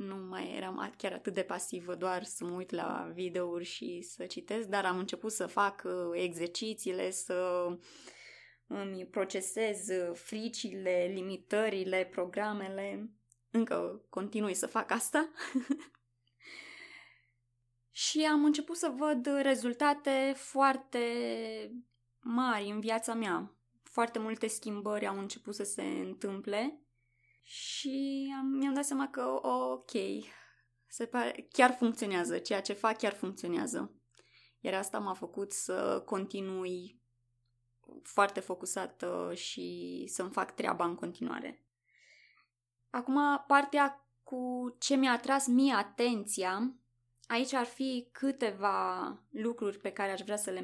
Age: 20-39